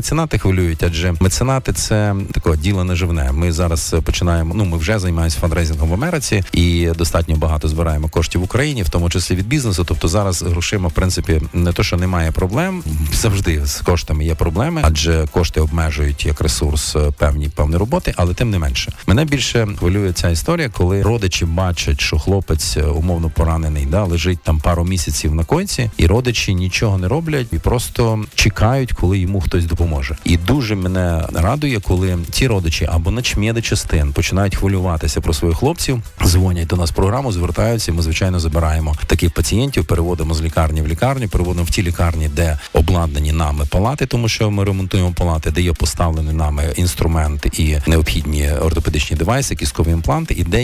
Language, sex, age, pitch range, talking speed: Ukrainian, male, 40-59, 80-100 Hz, 175 wpm